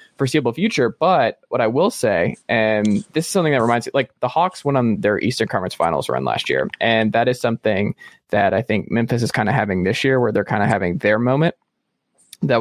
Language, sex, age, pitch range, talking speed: English, male, 20-39, 115-150 Hz, 230 wpm